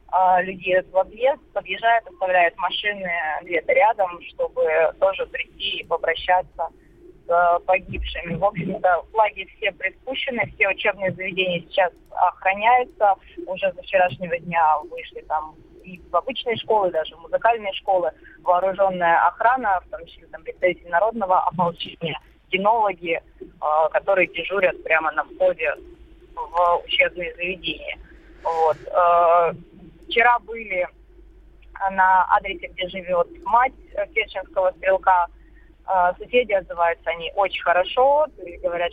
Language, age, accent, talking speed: Russian, 20-39, native, 115 wpm